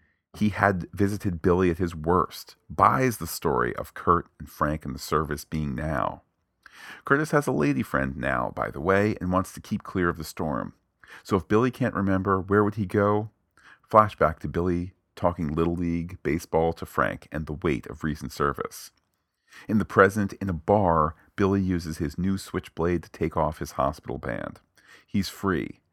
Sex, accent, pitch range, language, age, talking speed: male, American, 80-95 Hz, English, 40-59, 185 wpm